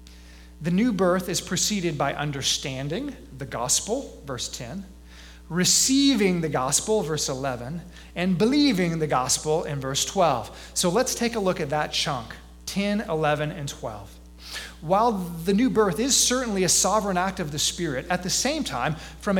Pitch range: 125-205 Hz